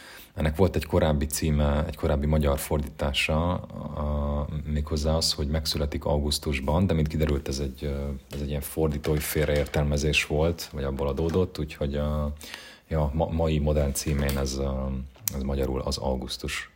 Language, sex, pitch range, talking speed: Hungarian, male, 70-80 Hz, 140 wpm